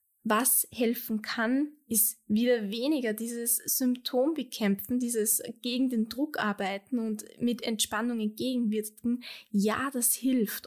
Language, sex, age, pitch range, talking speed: German, female, 20-39, 205-245 Hz, 120 wpm